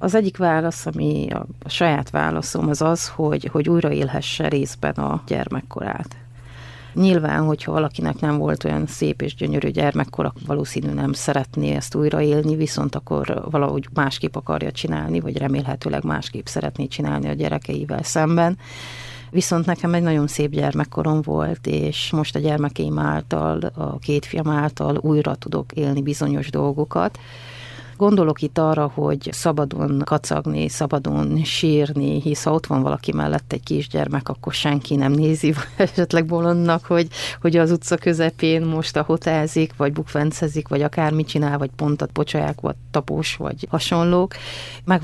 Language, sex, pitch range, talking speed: Hungarian, female, 120-160 Hz, 145 wpm